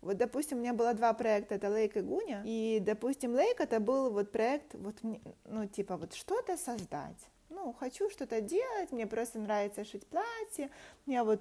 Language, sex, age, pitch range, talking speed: Russian, female, 20-39, 210-255 Hz, 175 wpm